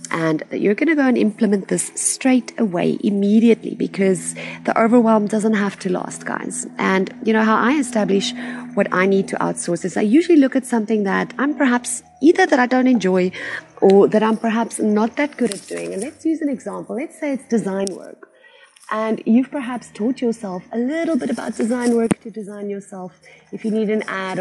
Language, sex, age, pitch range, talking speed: English, female, 30-49, 185-245 Hz, 200 wpm